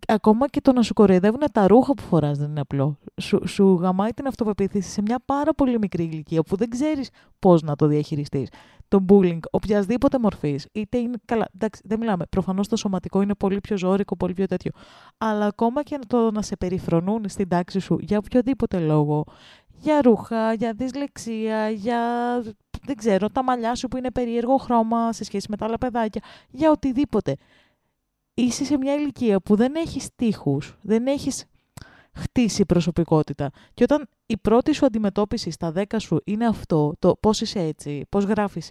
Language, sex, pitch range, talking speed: Greek, female, 185-245 Hz, 180 wpm